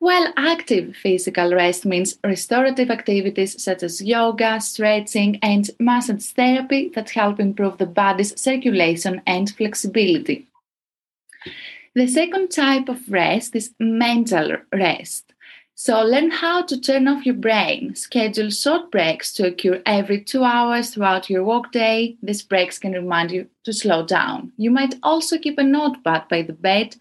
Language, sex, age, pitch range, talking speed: English, female, 20-39, 190-255 Hz, 145 wpm